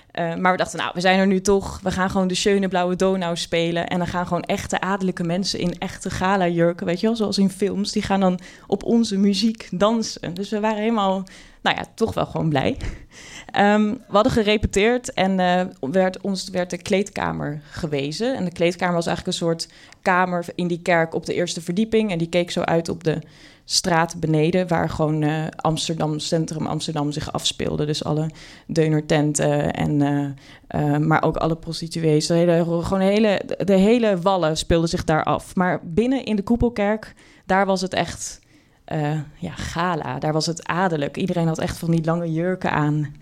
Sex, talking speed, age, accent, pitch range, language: female, 195 wpm, 20-39, Dutch, 165-200 Hz, Dutch